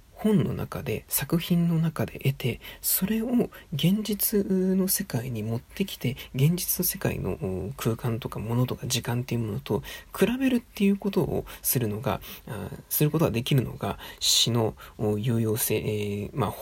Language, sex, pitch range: Japanese, male, 120-190 Hz